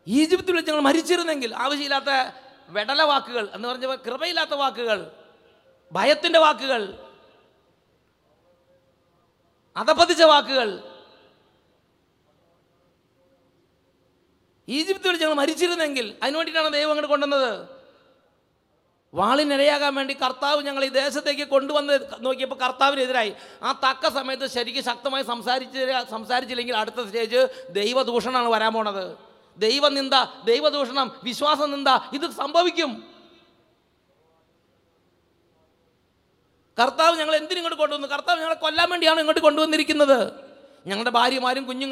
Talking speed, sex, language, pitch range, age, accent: 70 wpm, male, English, 200-290 Hz, 30-49, Indian